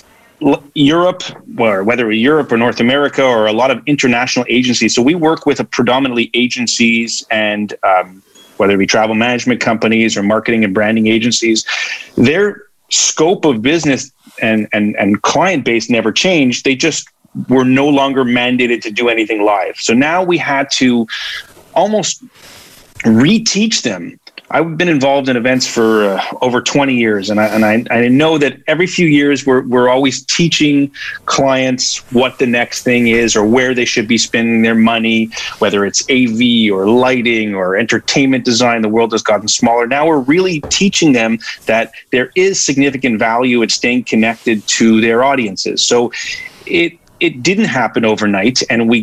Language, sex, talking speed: English, male, 165 wpm